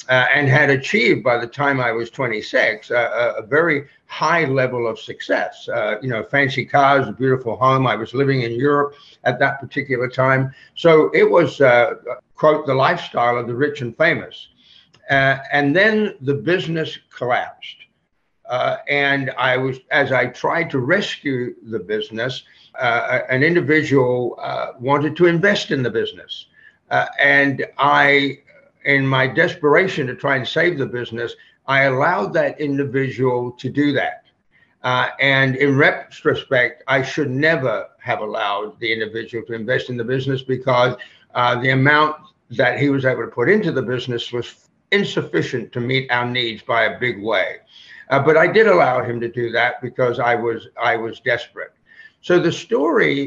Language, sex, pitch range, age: English, male, 125-150 Hz, 60-79